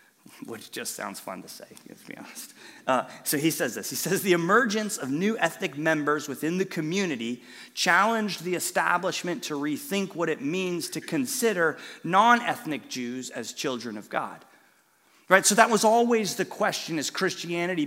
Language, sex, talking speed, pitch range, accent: English, male, 170 wpm, 155-215 Hz, American